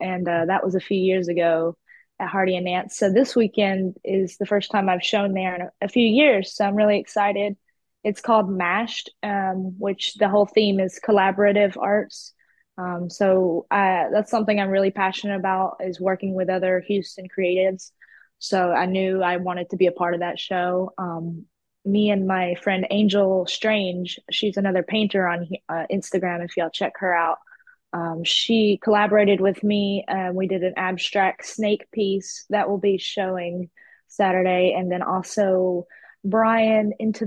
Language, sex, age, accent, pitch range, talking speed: English, female, 20-39, American, 185-210 Hz, 170 wpm